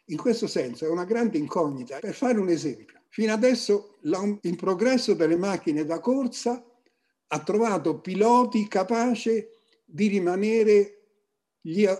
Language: Italian